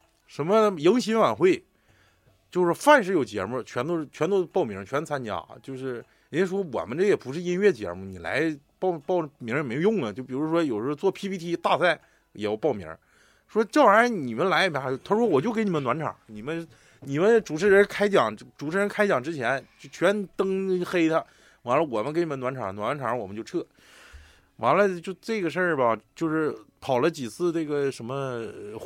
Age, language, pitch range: 20-39, Chinese, 130-195 Hz